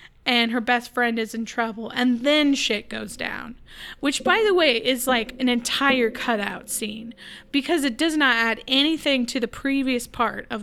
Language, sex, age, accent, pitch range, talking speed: English, female, 10-29, American, 230-270 Hz, 185 wpm